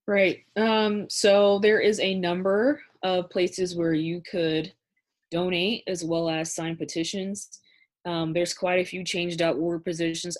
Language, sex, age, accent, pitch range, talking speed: English, female, 20-39, American, 155-180 Hz, 145 wpm